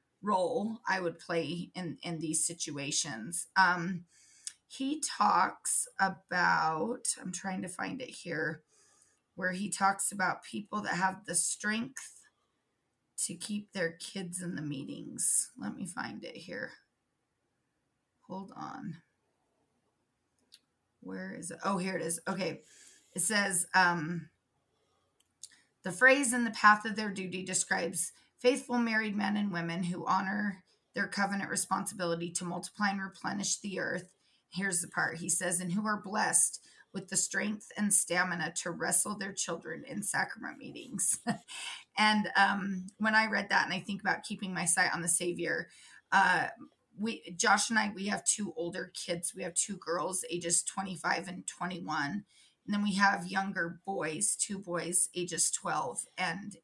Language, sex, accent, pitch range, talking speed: English, female, American, 175-205 Hz, 150 wpm